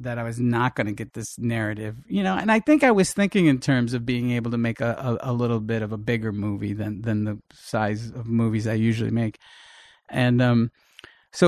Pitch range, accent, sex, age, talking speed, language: 110-130 Hz, American, male, 40-59, 235 wpm, English